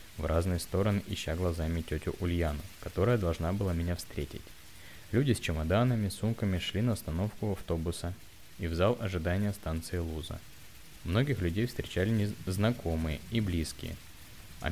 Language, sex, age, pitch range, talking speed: Russian, male, 20-39, 80-110 Hz, 135 wpm